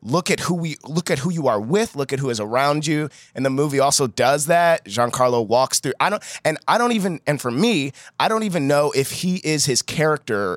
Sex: male